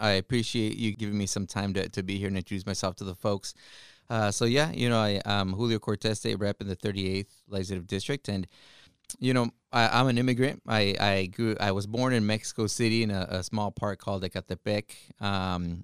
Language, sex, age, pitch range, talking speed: English, male, 30-49, 95-115 Hz, 210 wpm